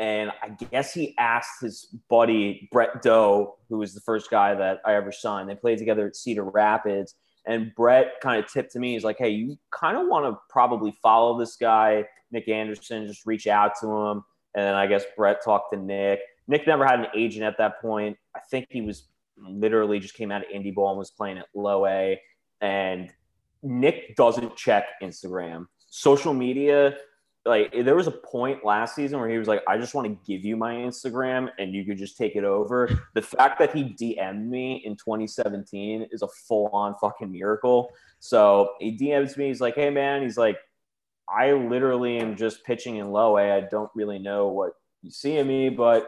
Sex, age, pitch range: male, 20-39, 100-120 Hz